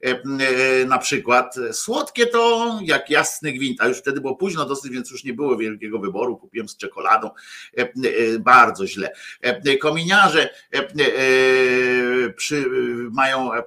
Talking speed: 115 wpm